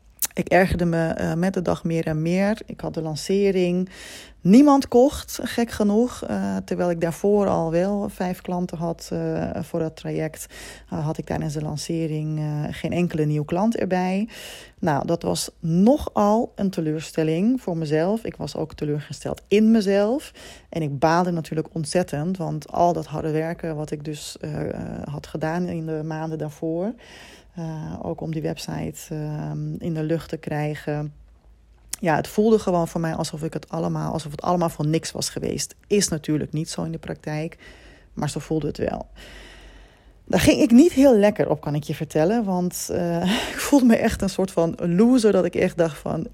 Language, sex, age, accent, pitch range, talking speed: Dutch, female, 20-39, Dutch, 155-185 Hz, 185 wpm